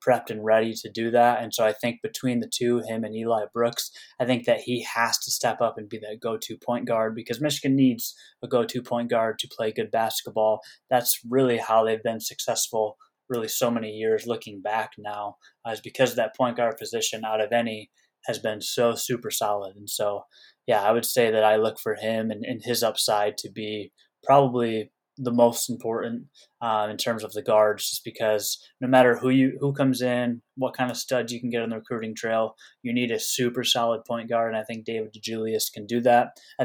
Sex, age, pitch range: male, 20-39, 110-120 Hz